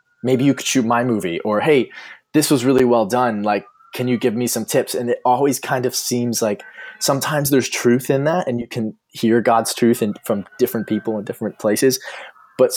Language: English